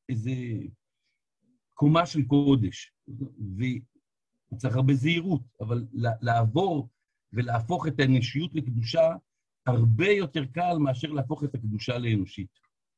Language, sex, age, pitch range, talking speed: Hebrew, male, 50-69, 120-150 Hz, 95 wpm